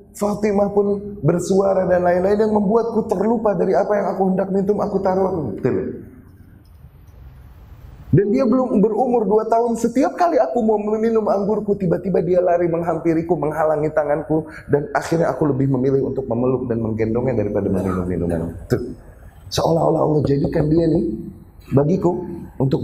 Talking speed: 135 wpm